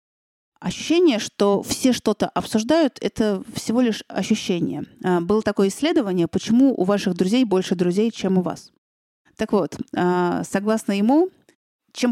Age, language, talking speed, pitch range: 30-49, Russian, 130 wpm, 185-230 Hz